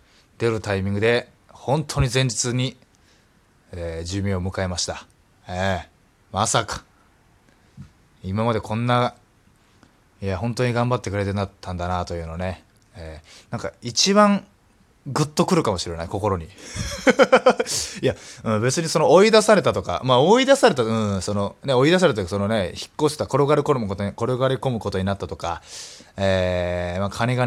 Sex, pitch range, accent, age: male, 95-140 Hz, native, 20-39